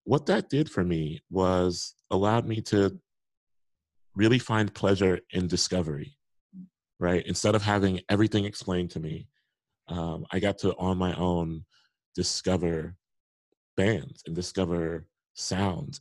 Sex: male